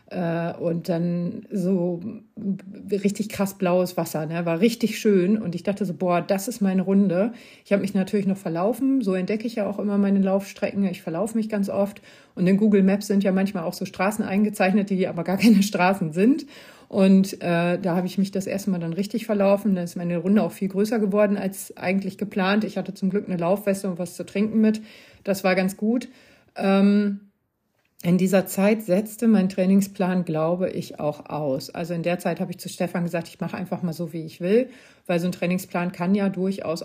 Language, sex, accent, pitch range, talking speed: German, female, German, 175-210 Hz, 210 wpm